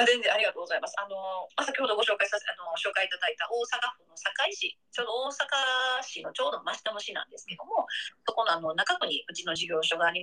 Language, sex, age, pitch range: Japanese, female, 30-49, 175-285 Hz